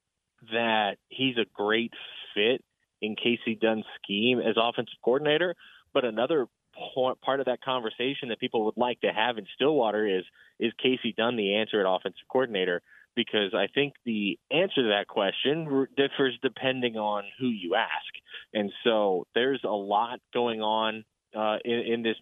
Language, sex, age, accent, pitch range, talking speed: English, male, 20-39, American, 110-130 Hz, 160 wpm